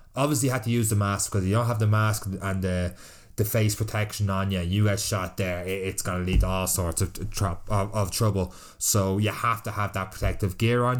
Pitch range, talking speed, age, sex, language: 95-110 Hz, 240 wpm, 20-39, male, English